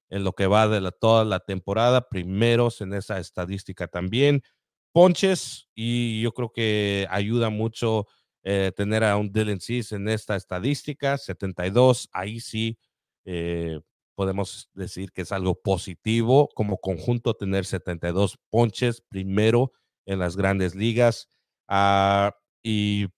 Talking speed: 135 wpm